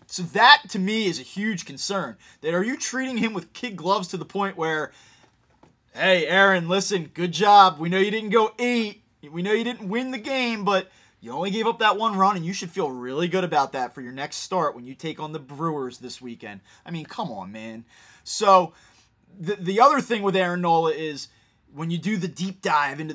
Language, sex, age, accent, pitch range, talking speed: English, male, 20-39, American, 165-215 Hz, 225 wpm